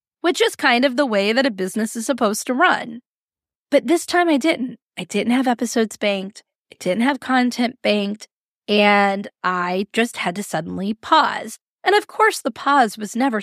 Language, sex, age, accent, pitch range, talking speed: English, female, 20-39, American, 205-275 Hz, 190 wpm